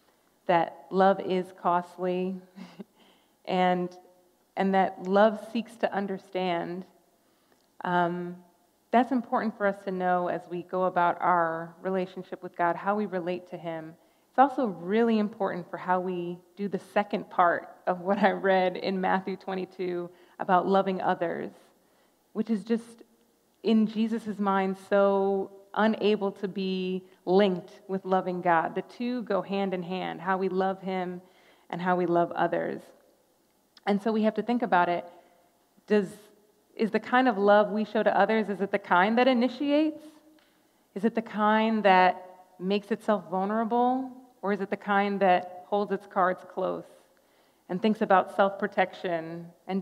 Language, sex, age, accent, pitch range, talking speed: English, female, 30-49, American, 180-210 Hz, 155 wpm